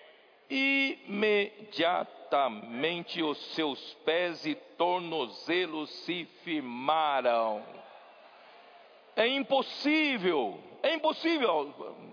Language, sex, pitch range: Portuguese, male, 160-275 Hz